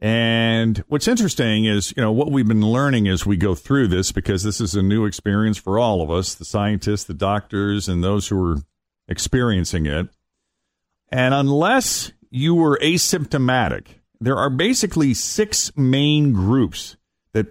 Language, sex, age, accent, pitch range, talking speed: English, male, 50-69, American, 100-135 Hz, 160 wpm